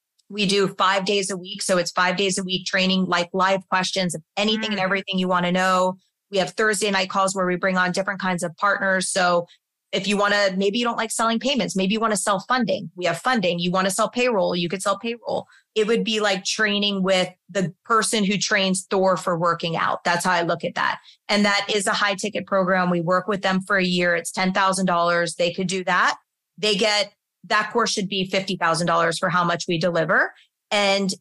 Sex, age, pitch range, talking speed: female, 30-49, 185-210 Hz, 230 wpm